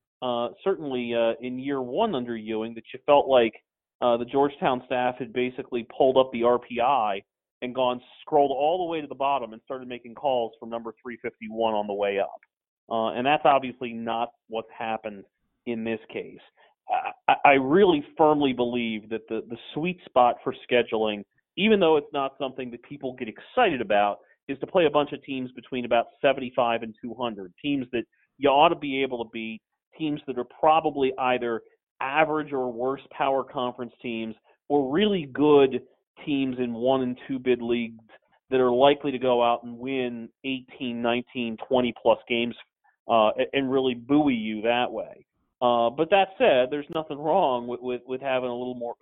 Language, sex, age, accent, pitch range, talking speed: English, male, 40-59, American, 115-140 Hz, 180 wpm